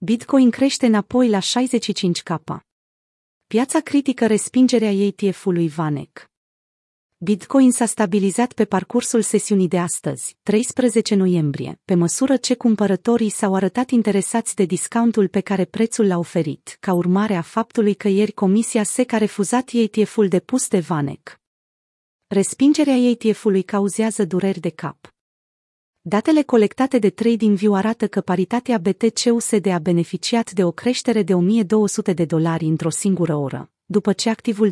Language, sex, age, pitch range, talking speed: Romanian, female, 30-49, 185-225 Hz, 135 wpm